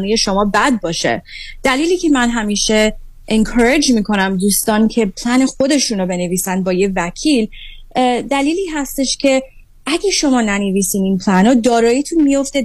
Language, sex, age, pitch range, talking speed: Persian, female, 30-49, 195-255 Hz, 140 wpm